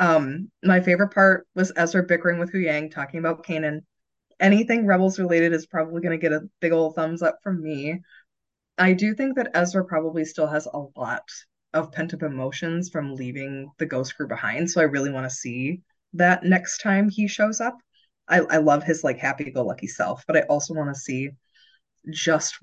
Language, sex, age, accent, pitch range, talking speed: English, female, 20-39, American, 150-190 Hz, 190 wpm